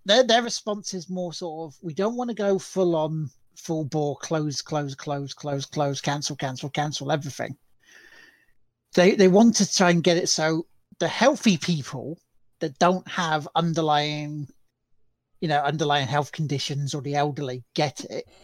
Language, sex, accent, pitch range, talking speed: English, male, British, 140-185 Hz, 165 wpm